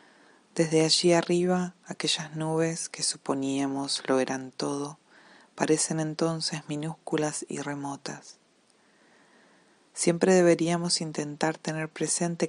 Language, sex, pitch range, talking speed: Spanish, female, 145-170 Hz, 95 wpm